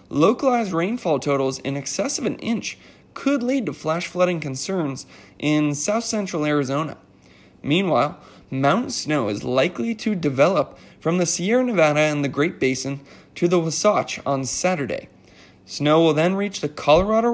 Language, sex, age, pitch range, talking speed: English, male, 20-39, 140-210 Hz, 150 wpm